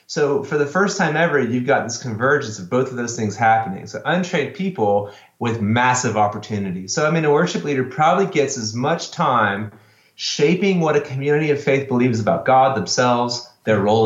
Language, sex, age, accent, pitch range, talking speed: English, male, 30-49, American, 110-150 Hz, 190 wpm